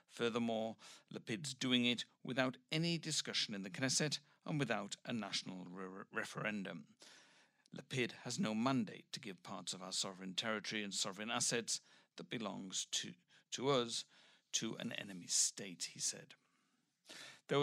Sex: male